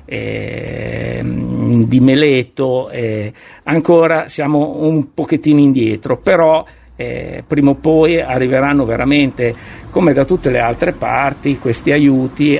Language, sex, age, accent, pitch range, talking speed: Italian, male, 50-69, native, 115-140 Hz, 115 wpm